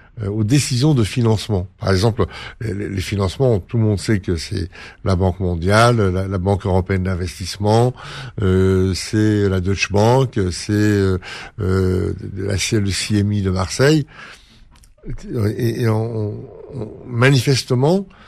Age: 60-79